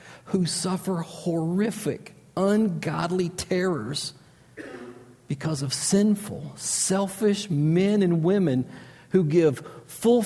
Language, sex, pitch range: English, male, 160-210 Hz